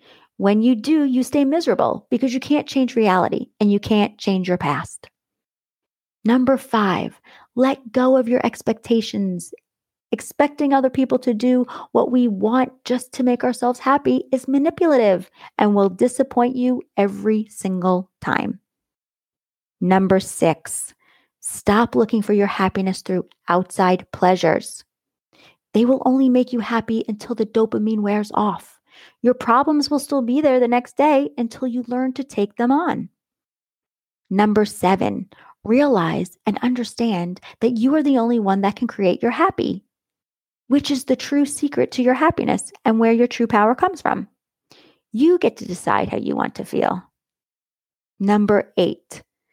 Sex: female